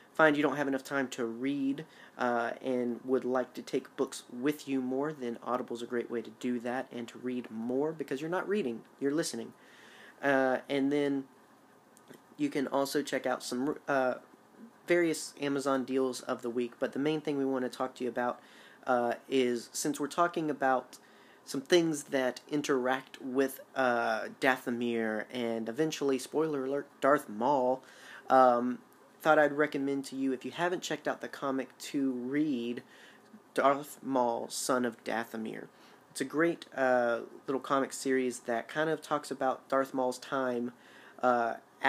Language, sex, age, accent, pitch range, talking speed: English, male, 30-49, American, 125-145 Hz, 170 wpm